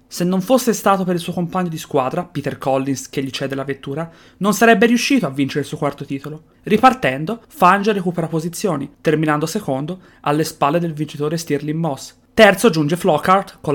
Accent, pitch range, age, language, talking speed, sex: native, 150-200 Hz, 30-49, Italian, 185 wpm, female